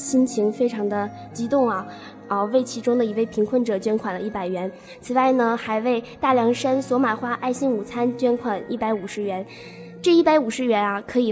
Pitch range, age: 215-255 Hz, 10-29